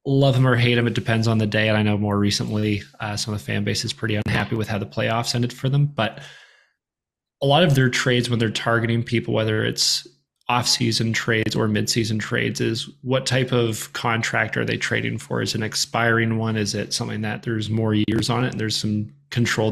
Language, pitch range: English, 110-130 Hz